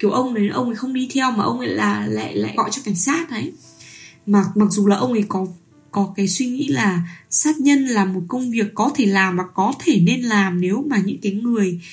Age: 10-29